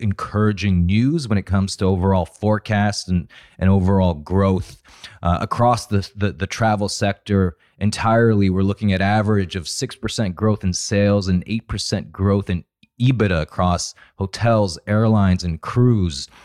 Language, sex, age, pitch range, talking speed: English, male, 30-49, 95-110 Hz, 140 wpm